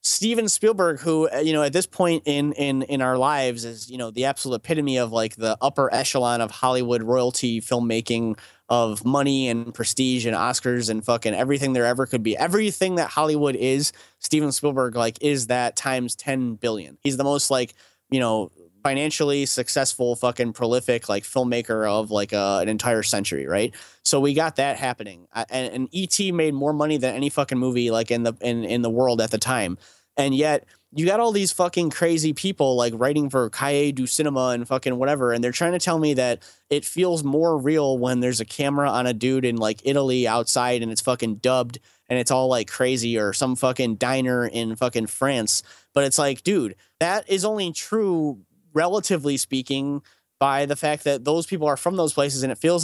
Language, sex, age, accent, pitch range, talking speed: English, male, 30-49, American, 120-145 Hz, 200 wpm